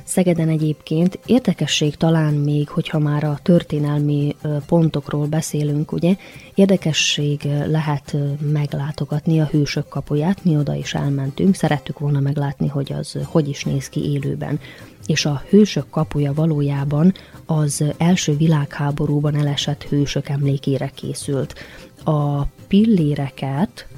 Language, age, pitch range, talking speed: Hungarian, 20-39, 140-160 Hz, 115 wpm